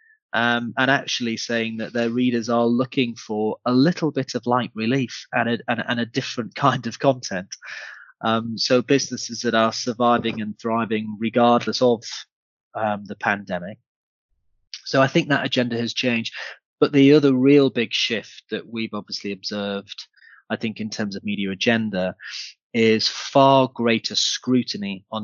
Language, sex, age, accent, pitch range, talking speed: English, male, 30-49, British, 105-125 Hz, 155 wpm